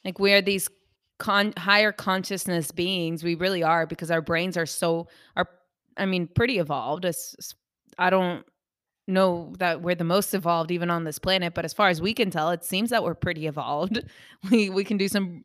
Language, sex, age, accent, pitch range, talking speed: English, female, 20-39, American, 165-190 Hz, 205 wpm